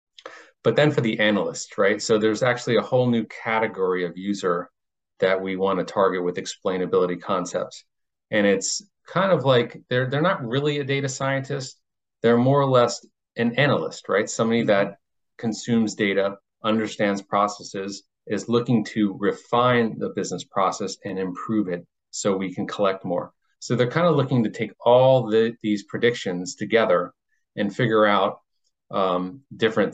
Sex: male